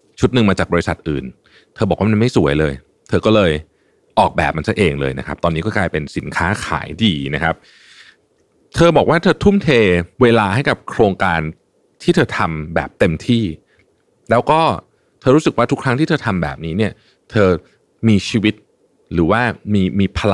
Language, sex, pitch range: Thai, male, 80-120 Hz